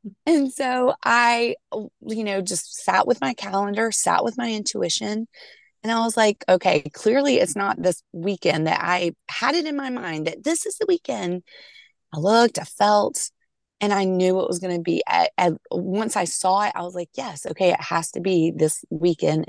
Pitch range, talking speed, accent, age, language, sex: 180-225 Hz, 200 wpm, American, 30-49, English, female